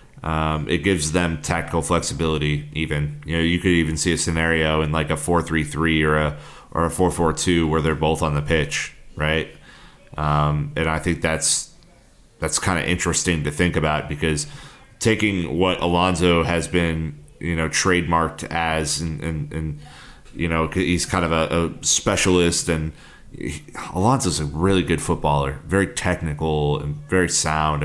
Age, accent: 30-49, American